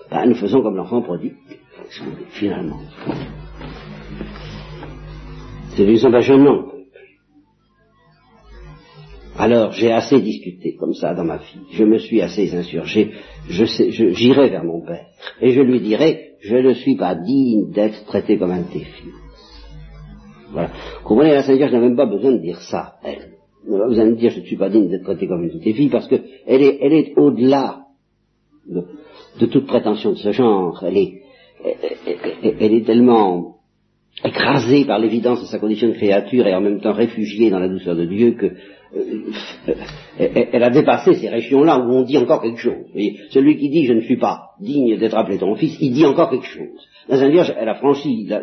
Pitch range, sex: 105-135 Hz, male